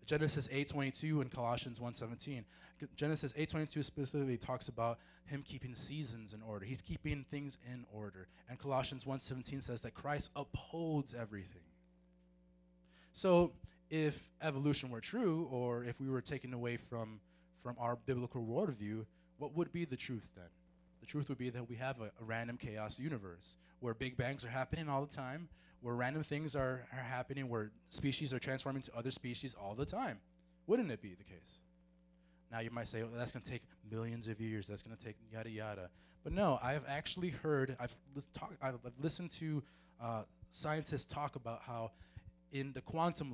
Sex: male